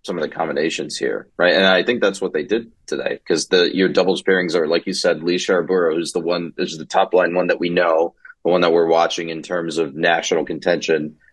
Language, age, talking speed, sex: English, 30-49, 245 wpm, male